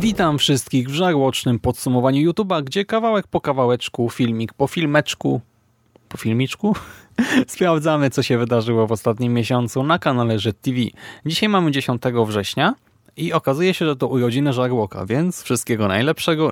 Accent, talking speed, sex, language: native, 140 wpm, male, Polish